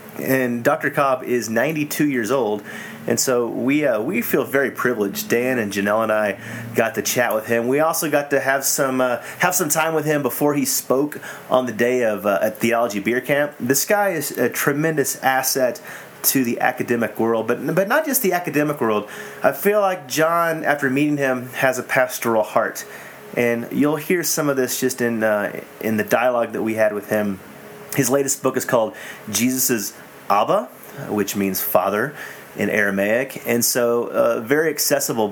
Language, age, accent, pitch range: English, 30-49, American, 115-145 Hz